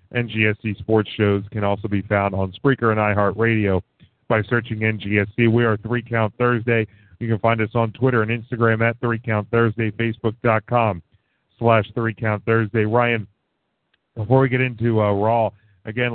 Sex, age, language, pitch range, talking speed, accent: male, 40-59, English, 110-130 Hz, 145 wpm, American